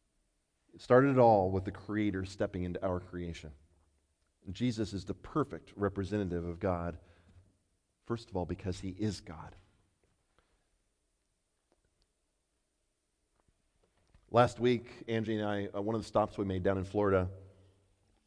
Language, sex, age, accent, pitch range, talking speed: English, male, 40-59, American, 95-115 Hz, 130 wpm